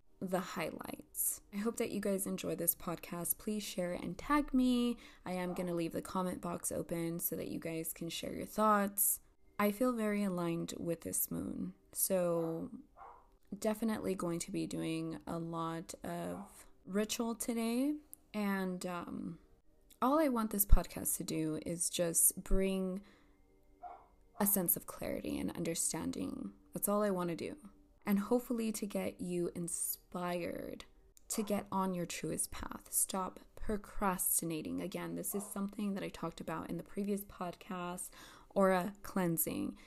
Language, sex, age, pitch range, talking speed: English, female, 20-39, 170-215 Hz, 155 wpm